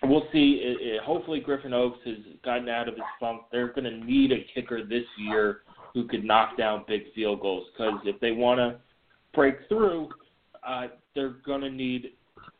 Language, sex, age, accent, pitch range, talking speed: English, male, 30-49, American, 115-130 Hz, 180 wpm